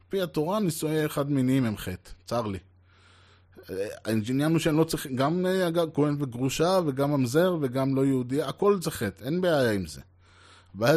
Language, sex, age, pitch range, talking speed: Hebrew, male, 20-39, 100-150 Hz, 165 wpm